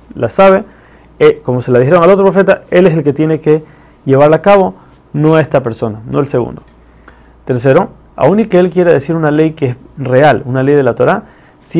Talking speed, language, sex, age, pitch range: 220 wpm, Spanish, male, 30-49, 125-165 Hz